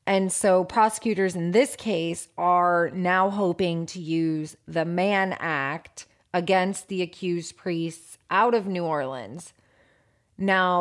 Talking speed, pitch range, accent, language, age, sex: 130 wpm, 165-195 Hz, American, English, 30-49, female